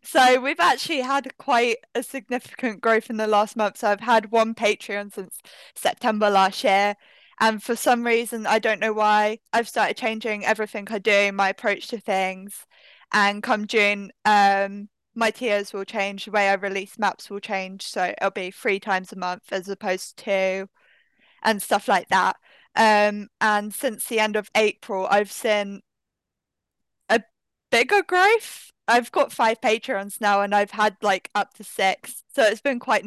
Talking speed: 175 wpm